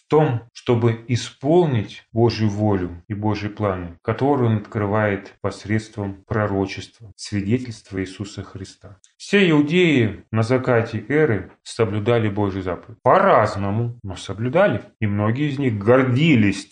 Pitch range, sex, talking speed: 105-145 Hz, male, 120 wpm